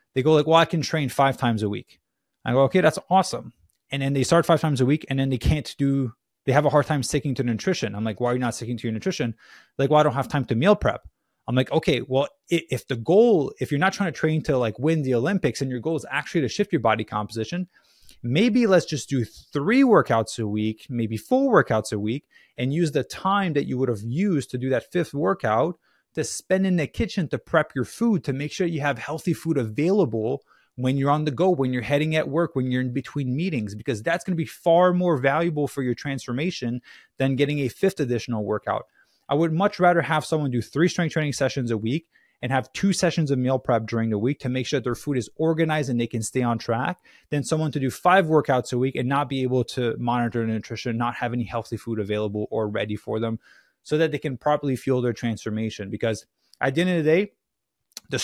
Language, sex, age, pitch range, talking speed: English, male, 20-39, 120-160 Hz, 245 wpm